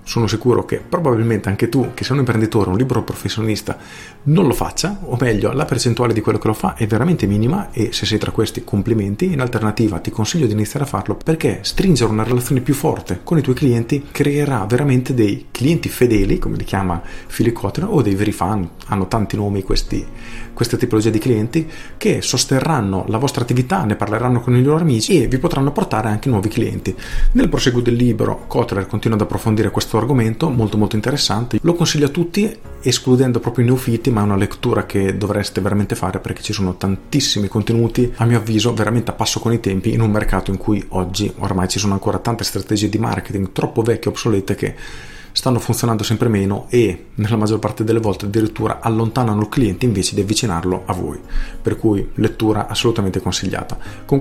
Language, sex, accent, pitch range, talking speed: Italian, male, native, 105-125 Hz, 195 wpm